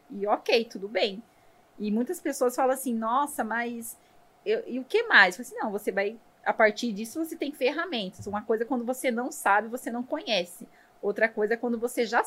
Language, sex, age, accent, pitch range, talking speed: English, female, 20-39, Brazilian, 200-250 Hz, 215 wpm